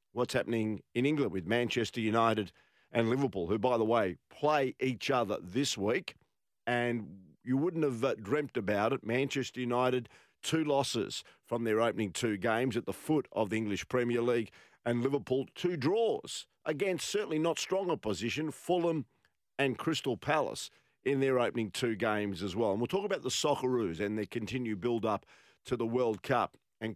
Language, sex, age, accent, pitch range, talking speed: English, male, 50-69, Australian, 115-150 Hz, 175 wpm